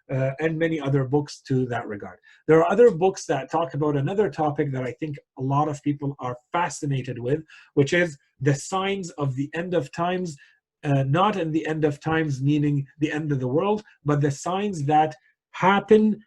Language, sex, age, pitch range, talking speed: English, male, 40-59, 130-160 Hz, 200 wpm